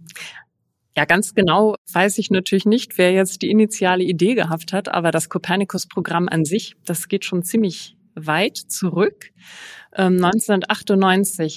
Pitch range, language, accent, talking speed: 165-195 Hz, German, German, 135 wpm